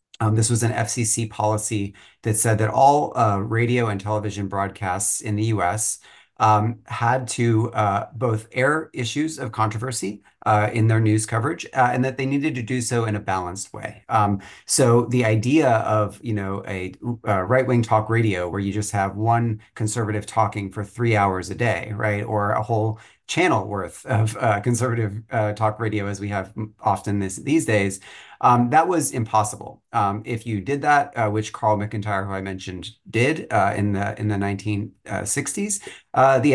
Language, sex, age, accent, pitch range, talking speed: English, male, 30-49, American, 100-120 Hz, 185 wpm